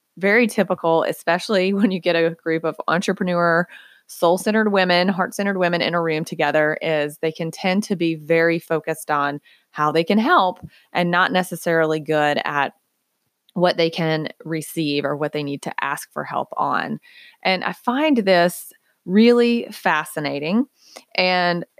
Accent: American